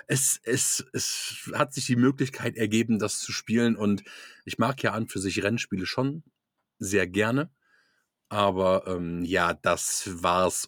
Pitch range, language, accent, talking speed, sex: 100-130 Hz, German, German, 150 wpm, male